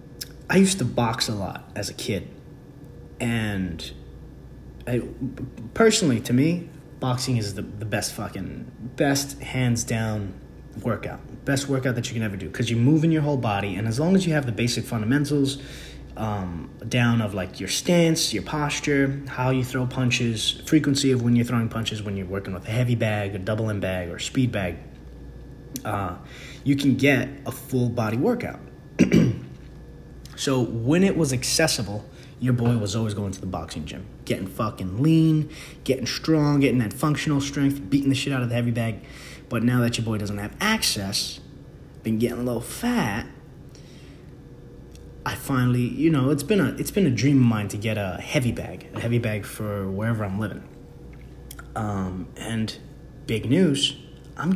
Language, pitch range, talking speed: English, 105-140 Hz, 175 wpm